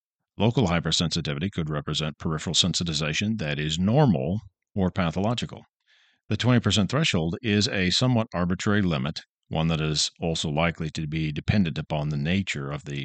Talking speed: 145 wpm